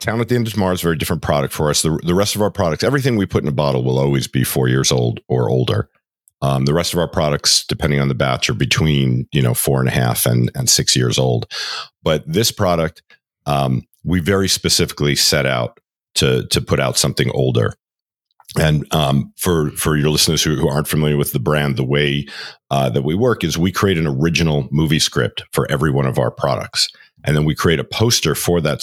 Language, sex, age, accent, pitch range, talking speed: English, male, 50-69, American, 70-85 Hz, 230 wpm